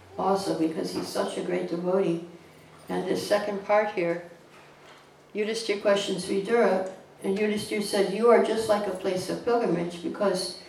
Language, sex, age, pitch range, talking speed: English, female, 60-79, 175-225 Hz, 150 wpm